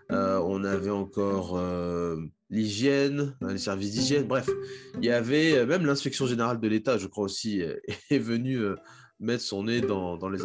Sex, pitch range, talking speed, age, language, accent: male, 110-140 Hz, 185 wpm, 20-39, French, French